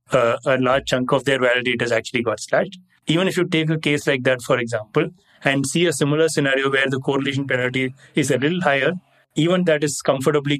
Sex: male